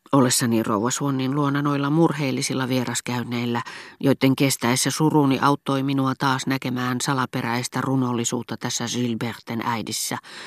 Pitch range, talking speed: 130-165 Hz, 105 wpm